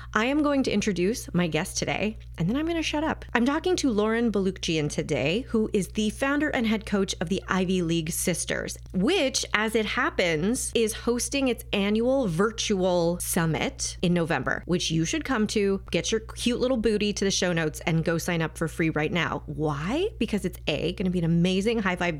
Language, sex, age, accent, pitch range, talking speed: English, female, 30-49, American, 165-220 Hz, 210 wpm